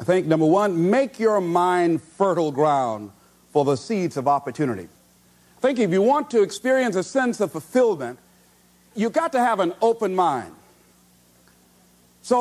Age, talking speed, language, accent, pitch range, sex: 50-69, 160 wpm, English, American, 175-275 Hz, male